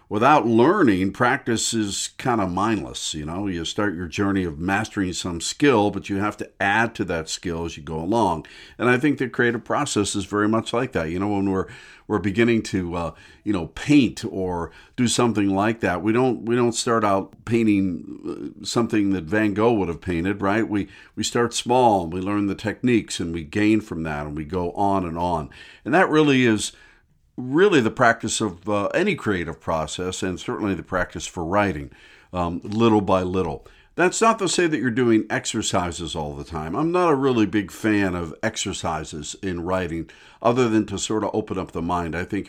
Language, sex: English, male